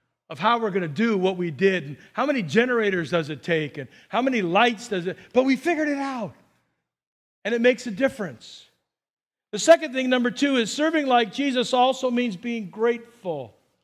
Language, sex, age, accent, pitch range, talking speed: English, male, 50-69, American, 185-240 Hz, 195 wpm